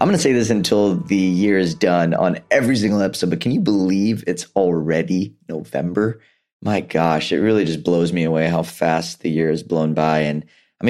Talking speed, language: 210 wpm, English